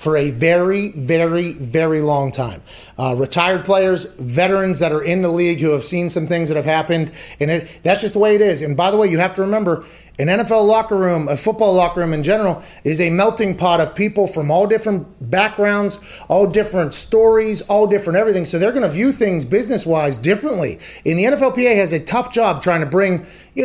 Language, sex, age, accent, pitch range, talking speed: English, male, 30-49, American, 165-205 Hz, 215 wpm